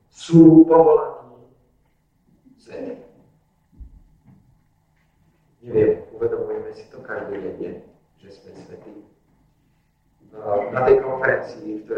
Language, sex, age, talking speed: Slovak, male, 40-59, 70 wpm